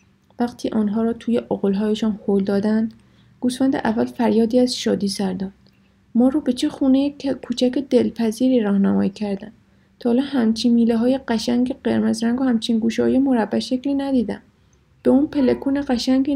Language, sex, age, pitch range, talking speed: Persian, female, 30-49, 215-255 Hz, 155 wpm